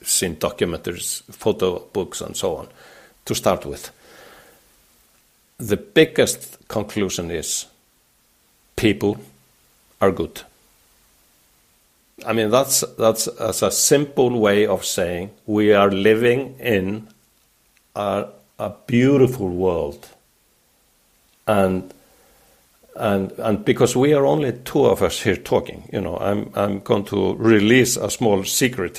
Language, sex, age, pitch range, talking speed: English, male, 60-79, 100-140 Hz, 120 wpm